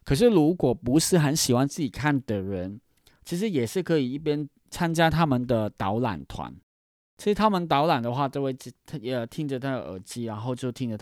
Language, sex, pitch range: Chinese, male, 110-150 Hz